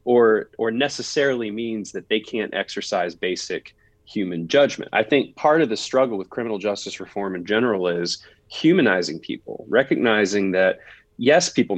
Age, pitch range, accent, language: 30-49, 105-125 Hz, American, English